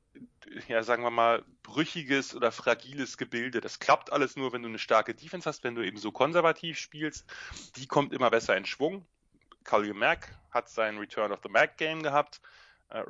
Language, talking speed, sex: German, 190 wpm, male